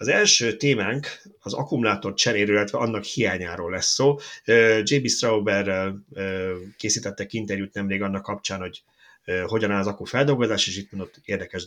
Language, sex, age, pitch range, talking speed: Hungarian, male, 30-49, 100-125 Hz, 145 wpm